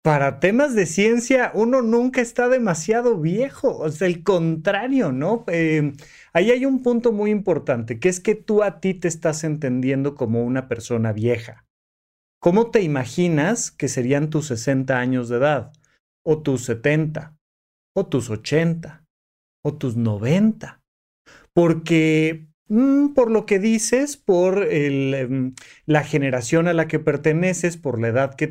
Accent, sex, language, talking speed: Mexican, male, Spanish, 145 wpm